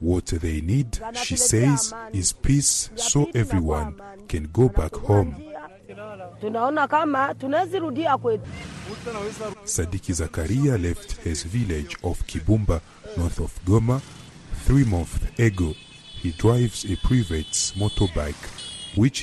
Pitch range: 85-125 Hz